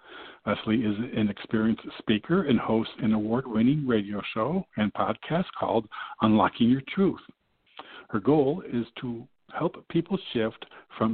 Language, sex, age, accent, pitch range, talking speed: English, male, 60-79, American, 110-160 Hz, 135 wpm